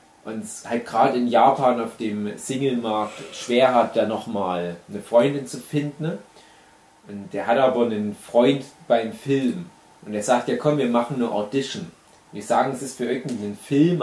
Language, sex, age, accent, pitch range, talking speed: German, male, 30-49, German, 110-155 Hz, 180 wpm